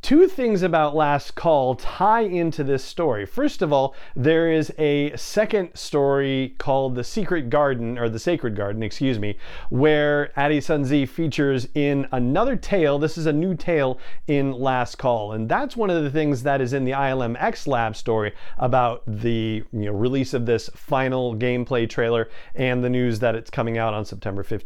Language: English